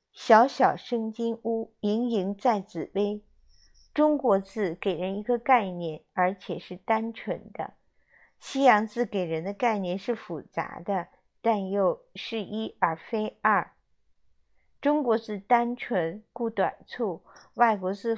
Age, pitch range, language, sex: 50-69, 195-235 Hz, Chinese, female